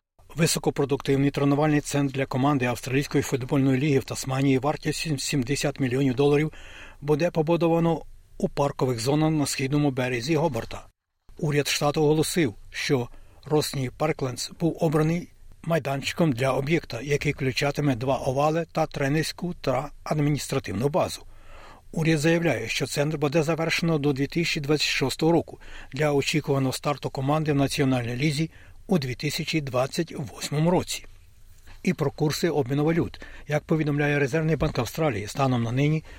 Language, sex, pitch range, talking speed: Ukrainian, male, 130-155 Hz, 125 wpm